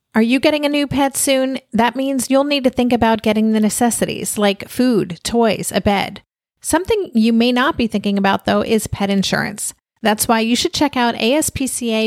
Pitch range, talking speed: 210-255 Hz, 200 wpm